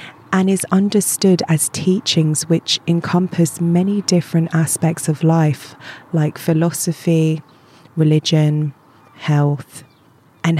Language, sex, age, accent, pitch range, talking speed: English, female, 20-39, British, 155-170 Hz, 95 wpm